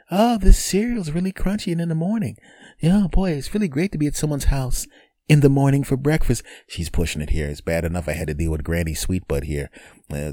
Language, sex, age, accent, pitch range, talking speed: English, male, 30-49, American, 80-100 Hz, 240 wpm